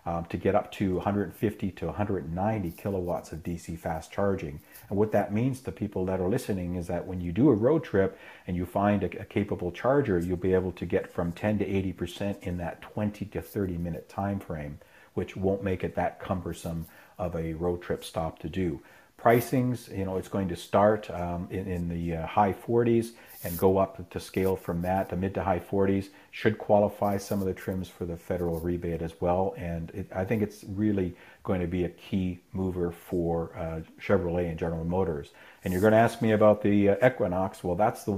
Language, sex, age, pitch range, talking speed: English, male, 50-69, 90-105 Hz, 210 wpm